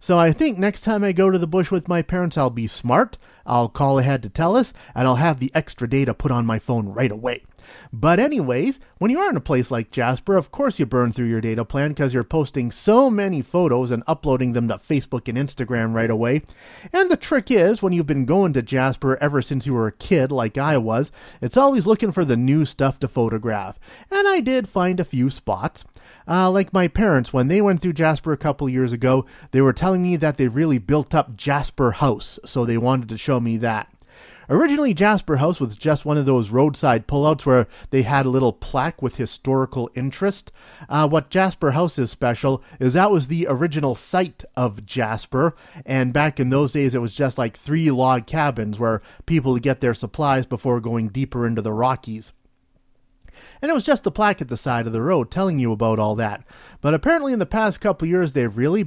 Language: English